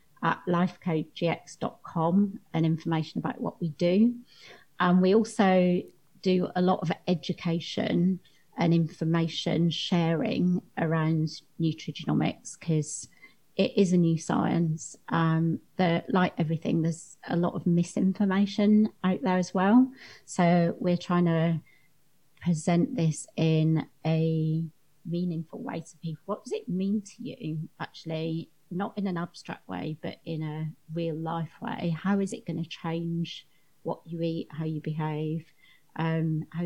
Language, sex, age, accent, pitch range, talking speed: English, female, 30-49, British, 155-180 Hz, 135 wpm